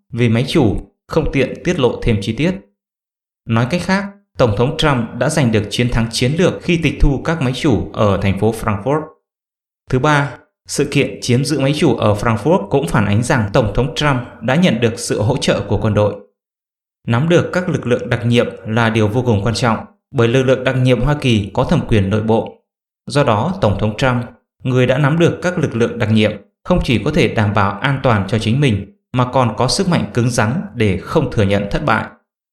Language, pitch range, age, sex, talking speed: English, 110-145 Hz, 20-39, male, 225 wpm